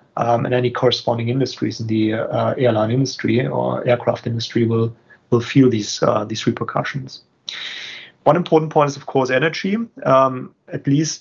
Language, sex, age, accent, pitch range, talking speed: English, male, 30-49, German, 115-130 Hz, 160 wpm